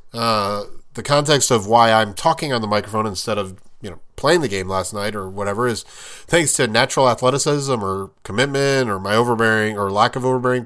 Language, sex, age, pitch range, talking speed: English, male, 30-49, 105-135 Hz, 195 wpm